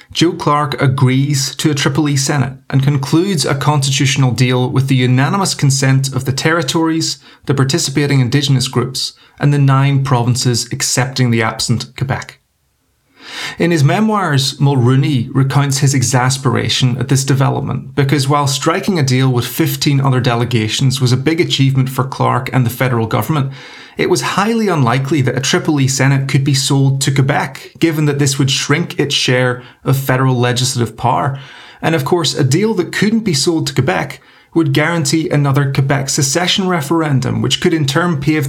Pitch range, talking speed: 130-155 Hz, 170 wpm